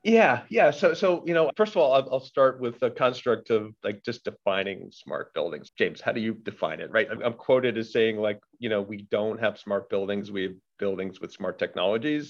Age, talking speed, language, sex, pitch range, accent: 40-59, 225 wpm, English, male, 105-130 Hz, American